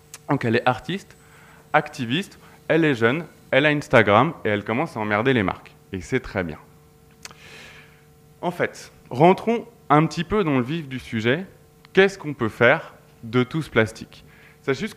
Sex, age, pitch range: male, 20-39, 115-150 Hz